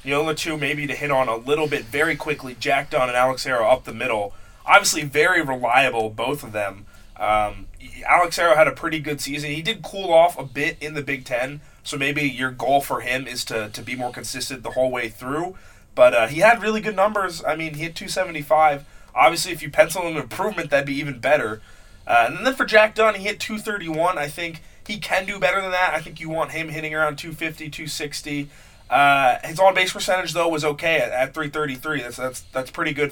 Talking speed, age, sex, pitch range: 235 wpm, 20-39, male, 125-165 Hz